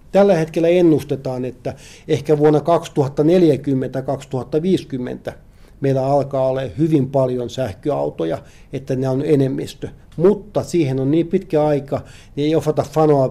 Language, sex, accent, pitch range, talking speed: Finnish, male, native, 130-150 Hz, 120 wpm